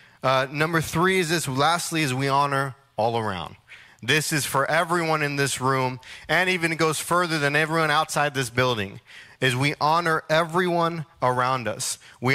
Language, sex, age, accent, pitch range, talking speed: English, male, 30-49, American, 125-160 Hz, 170 wpm